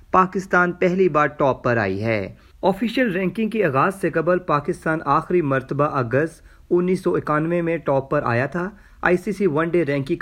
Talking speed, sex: 170 wpm, male